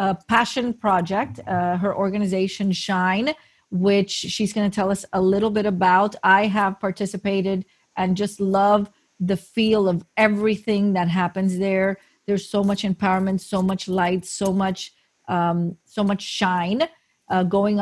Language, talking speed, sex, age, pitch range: English, 150 wpm, female, 40-59, 185-210 Hz